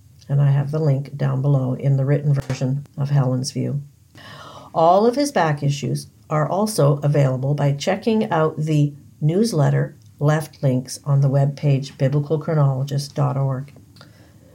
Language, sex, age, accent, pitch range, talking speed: English, female, 50-69, American, 135-165 Hz, 135 wpm